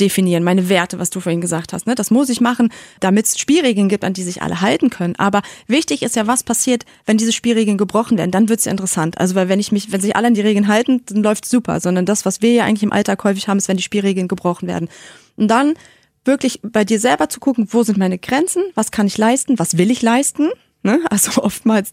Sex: female